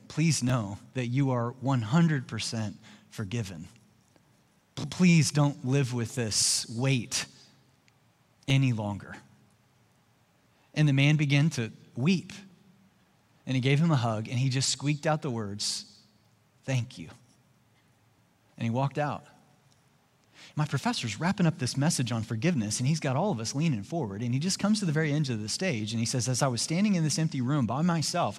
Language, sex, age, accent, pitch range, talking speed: English, male, 30-49, American, 115-155 Hz, 170 wpm